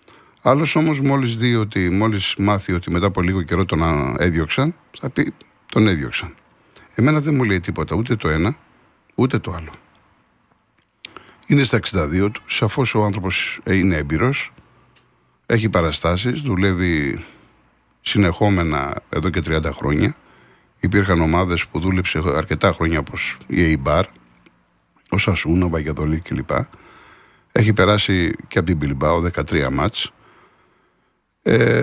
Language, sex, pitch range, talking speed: Greek, male, 80-110 Hz, 125 wpm